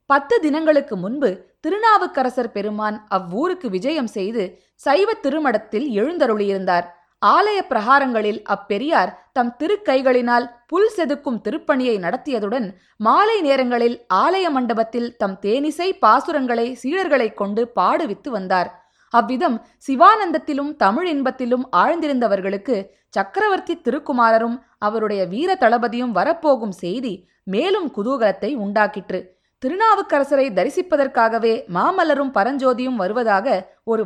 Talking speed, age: 90 wpm, 20-39